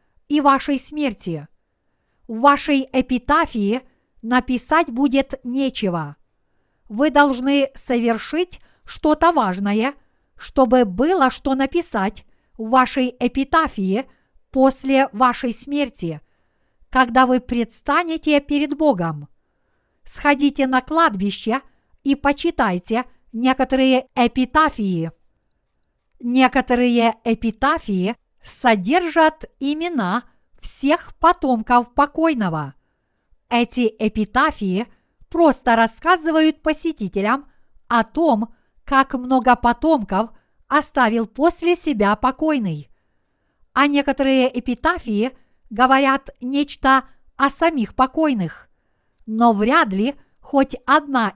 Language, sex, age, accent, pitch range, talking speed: Russian, female, 50-69, native, 225-285 Hz, 80 wpm